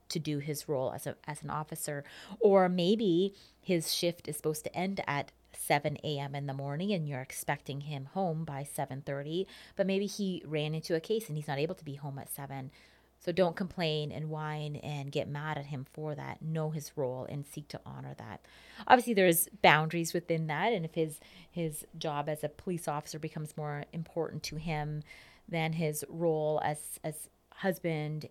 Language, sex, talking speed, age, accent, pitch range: English, female, 195 wpm, 30-49, American, 150-185 Hz